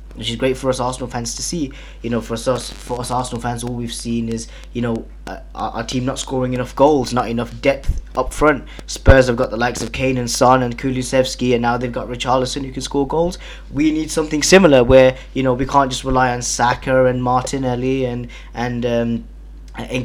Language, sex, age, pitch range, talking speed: English, male, 20-39, 120-130 Hz, 220 wpm